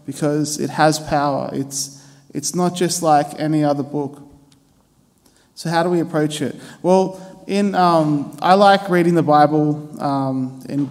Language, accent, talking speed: English, Australian, 155 wpm